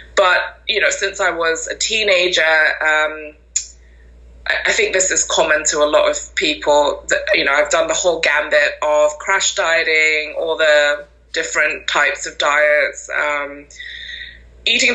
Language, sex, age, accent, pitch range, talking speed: English, female, 20-39, British, 150-185 Hz, 155 wpm